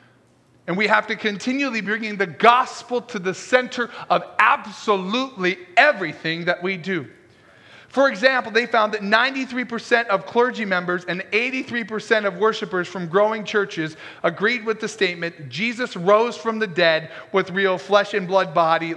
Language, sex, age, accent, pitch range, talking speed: English, male, 40-59, American, 170-220 Hz, 150 wpm